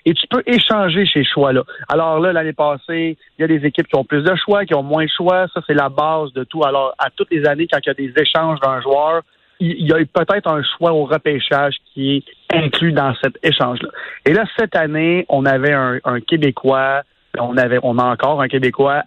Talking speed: 235 wpm